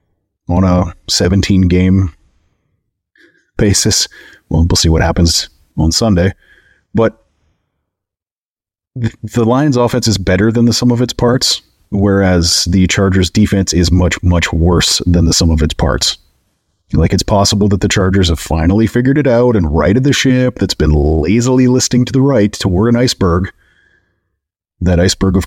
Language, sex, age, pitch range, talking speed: English, male, 30-49, 85-105 Hz, 155 wpm